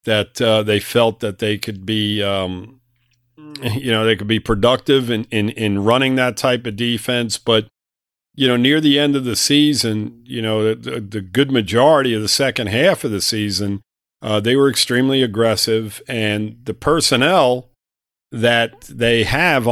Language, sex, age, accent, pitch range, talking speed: English, male, 50-69, American, 105-130 Hz, 170 wpm